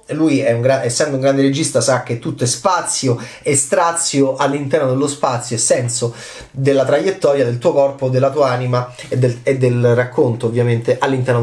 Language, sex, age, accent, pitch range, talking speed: Italian, male, 30-49, native, 130-185 Hz, 185 wpm